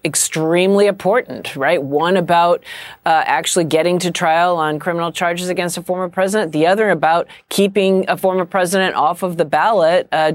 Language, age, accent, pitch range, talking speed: English, 40-59, American, 165-205 Hz, 170 wpm